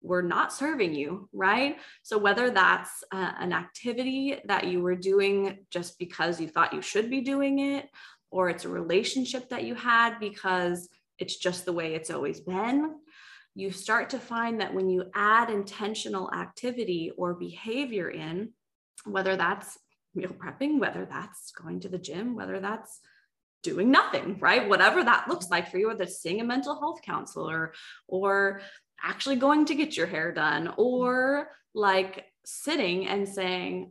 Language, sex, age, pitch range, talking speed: English, female, 20-39, 185-245 Hz, 165 wpm